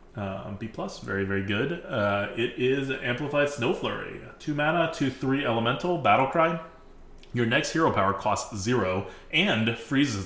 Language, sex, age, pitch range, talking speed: English, male, 20-39, 95-120 Hz, 160 wpm